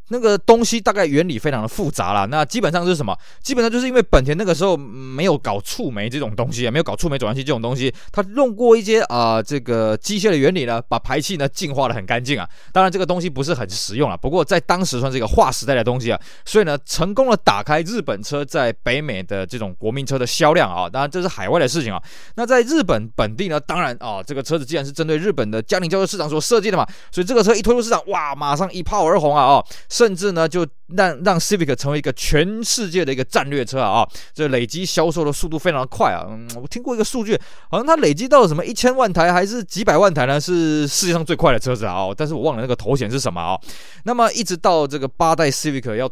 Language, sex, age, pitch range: Chinese, male, 20-39, 130-190 Hz